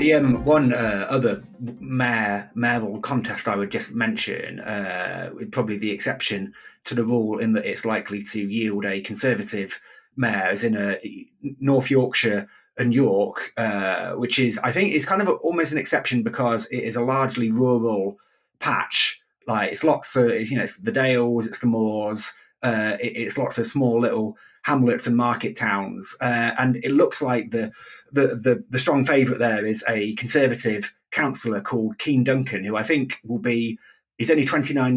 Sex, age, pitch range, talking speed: male, 30-49, 110-130 Hz, 170 wpm